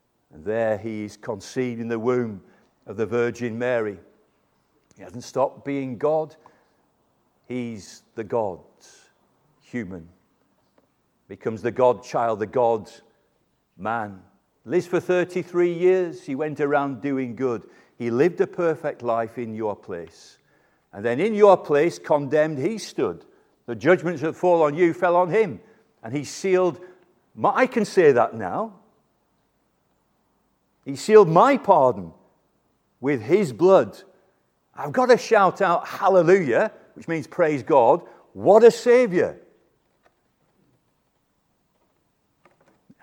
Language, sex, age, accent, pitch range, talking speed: English, male, 50-69, British, 120-180 Hz, 125 wpm